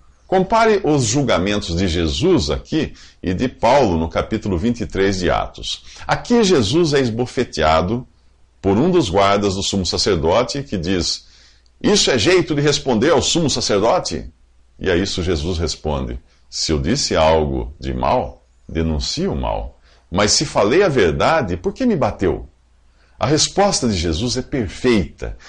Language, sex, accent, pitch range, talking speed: English, male, Brazilian, 75-120 Hz, 150 wpm